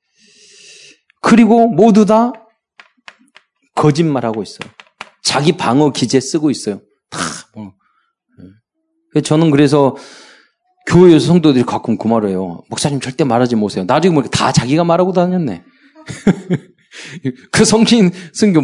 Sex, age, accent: male, 40-59, native